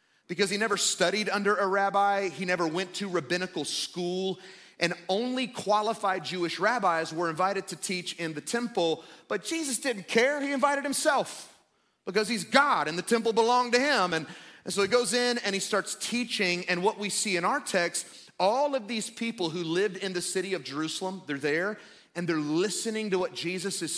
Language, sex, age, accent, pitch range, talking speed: English, male, 30-49, American, 170-220 Hz, 195 wpm